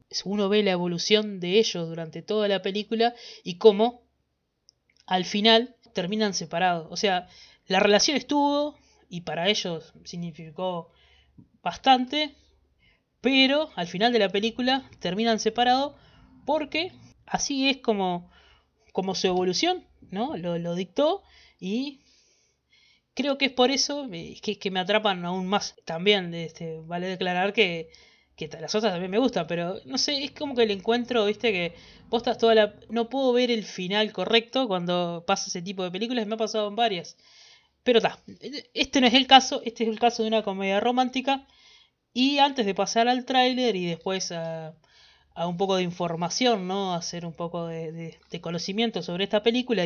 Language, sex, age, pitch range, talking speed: Spanish, female, 20-39, 180-240 Hz, 165 wpm